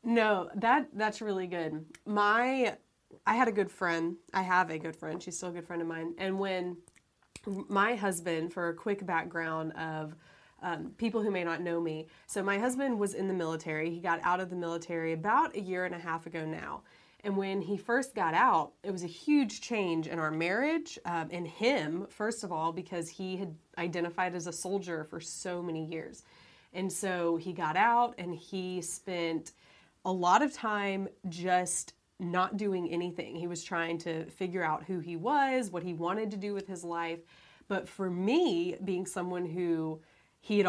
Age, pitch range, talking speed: 30-49, 170-200 Hz, 195 wpm